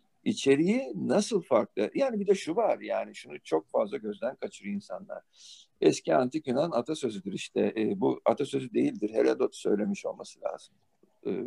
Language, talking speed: Turkish, 150 wpm